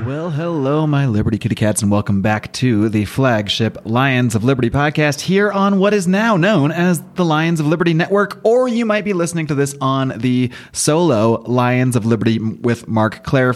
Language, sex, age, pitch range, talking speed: English, male, 30-49, 115-155 Hz, 195 wpm